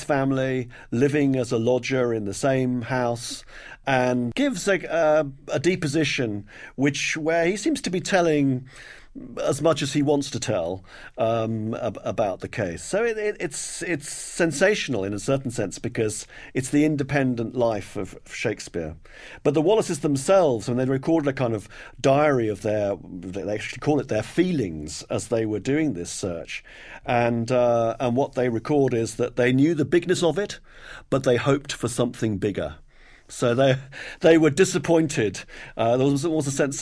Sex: male